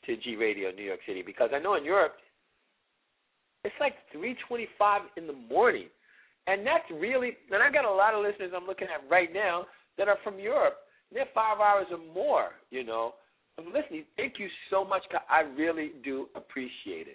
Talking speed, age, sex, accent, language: 190 wpm, 50-69, male, American, English